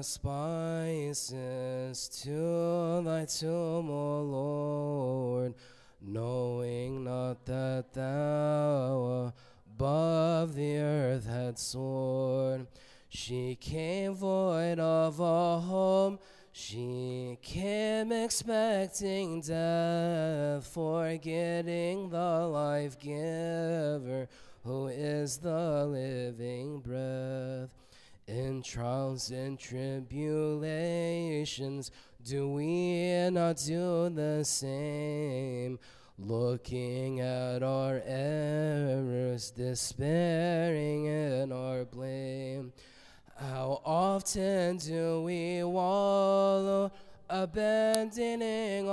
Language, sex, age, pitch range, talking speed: English, male, 20-39, 130-170 Hz, 70 wpm